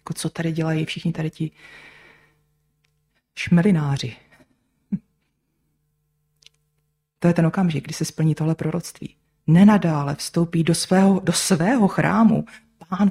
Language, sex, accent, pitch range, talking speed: Czech, female, native, 150-180 Hz, 110 wpm